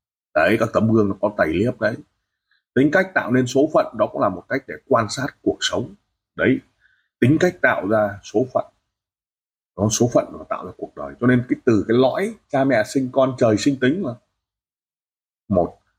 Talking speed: 205 wpm